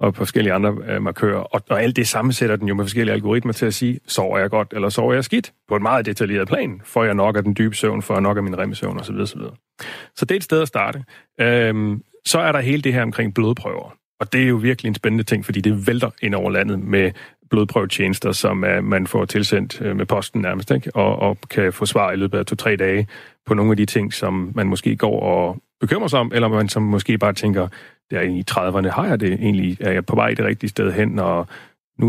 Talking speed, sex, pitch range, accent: 245 wpm, male, 100-120 Hz, native